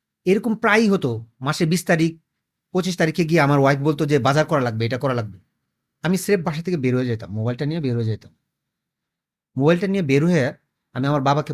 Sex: male